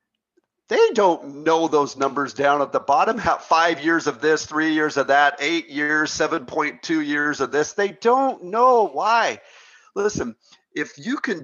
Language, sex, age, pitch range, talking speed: English, male, 40-59, 110-150 Hz, 170 wpm